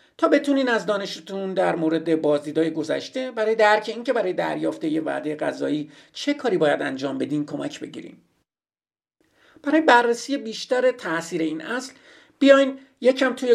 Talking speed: 140 wpm